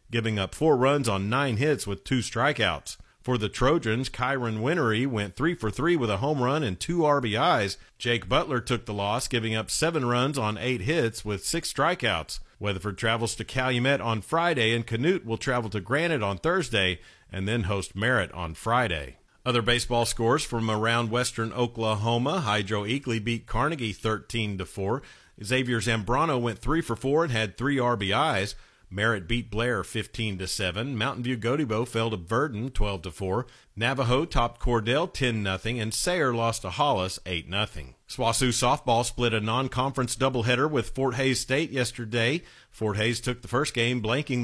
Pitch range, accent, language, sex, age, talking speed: 110-135 Hz, American, English, male, 50-69, 170 wpm